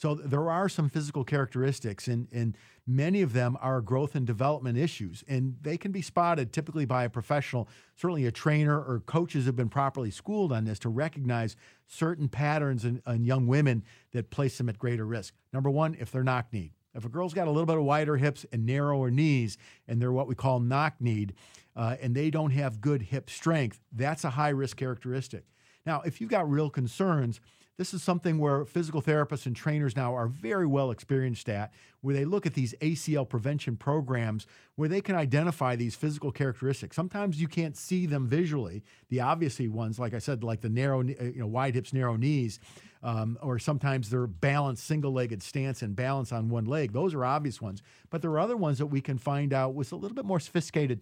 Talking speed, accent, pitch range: 205 wpm, American, 120-150 Hz